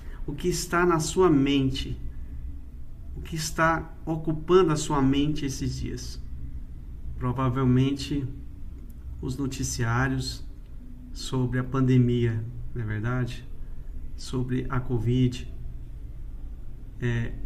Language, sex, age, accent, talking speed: Romanian, male, 50-69, Brazilian, 95 wpm